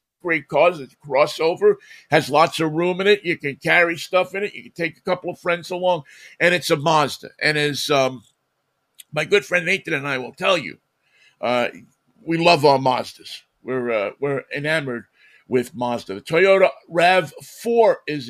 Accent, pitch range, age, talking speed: American, 140-180 Hz, 50-69, 185 wpm